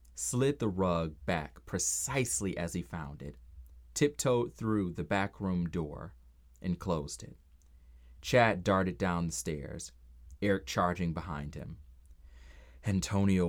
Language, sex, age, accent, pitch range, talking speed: English, male, 30-49, American, 65-95 Hz, 125 wpm